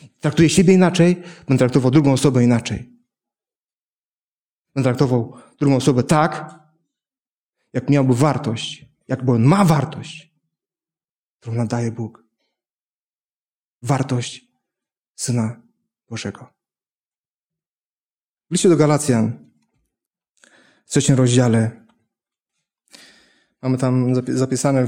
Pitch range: 125-160 Hz